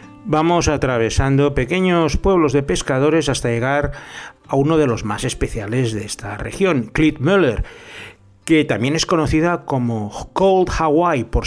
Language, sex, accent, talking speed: Spanish, male, Spanish, 135 wpm